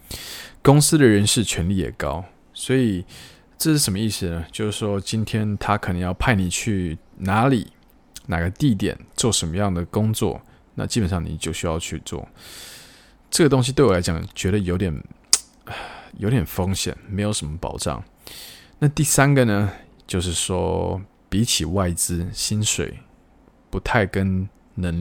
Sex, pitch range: male, 90-110 Hz